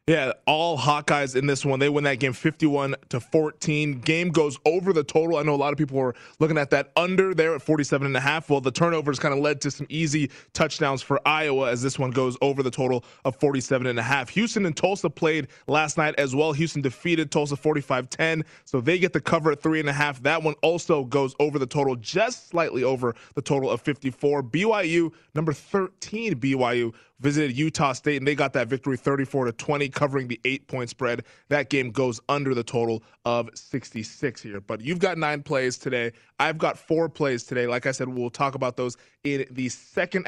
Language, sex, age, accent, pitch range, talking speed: English, male, 20-39, American, 135-165 Hz, 215 wpm